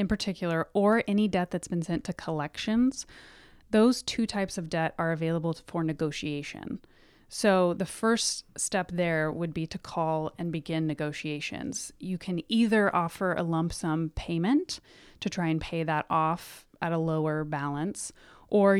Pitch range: 155-190 Hz